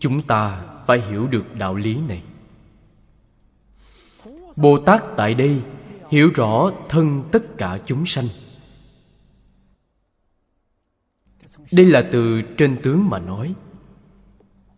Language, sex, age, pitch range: Vietnamese, male, 20-39, 105-160 Hz